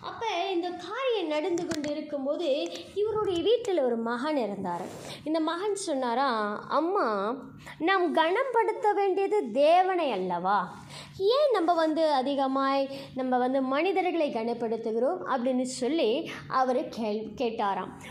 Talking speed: 105 wpm